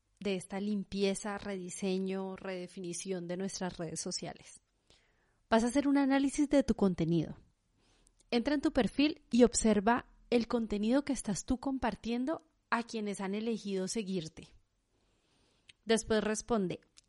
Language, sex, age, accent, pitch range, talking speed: Spanish, female, 30-49, Colombian, 190-235 Hz, 125 wpm